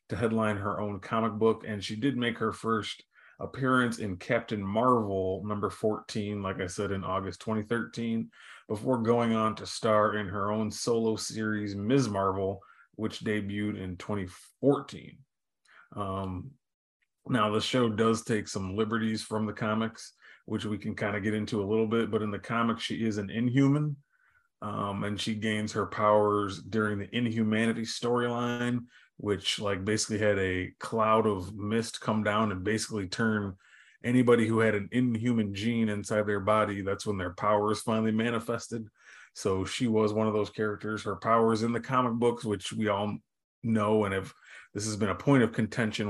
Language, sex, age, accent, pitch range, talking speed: English, male, 30-49, American, 105-115 Hz, 175 wpm